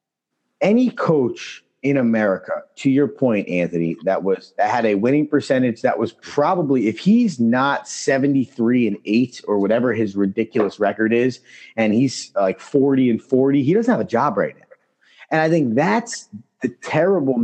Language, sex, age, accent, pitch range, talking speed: English, male, 30-49, American, 115-175 Hz, 170 wpm